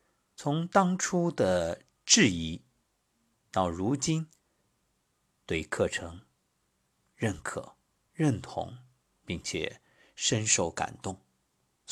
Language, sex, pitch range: Chinese, male, 90-130 Hz